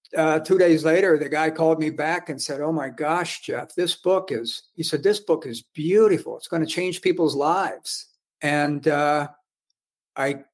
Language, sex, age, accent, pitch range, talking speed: English, male, 50-69, American, 145-165 Hz, 190 wpm